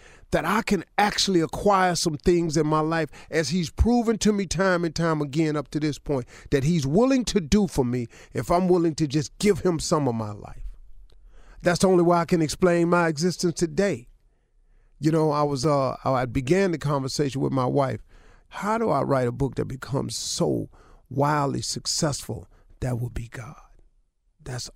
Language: English